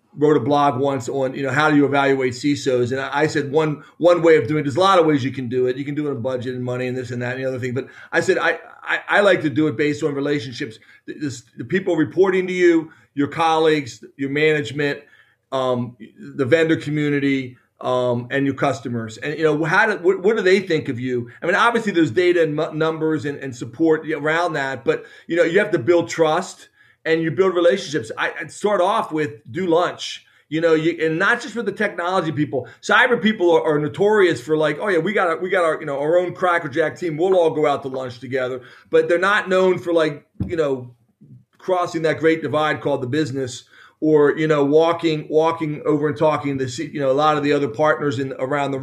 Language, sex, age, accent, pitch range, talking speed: English, male, 40-59, American, 140-170 Hz, 240 wpm